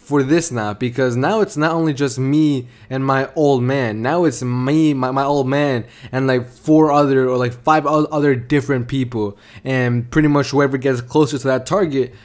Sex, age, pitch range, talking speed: male, 20-39, 120-140 Hz, 195 wpm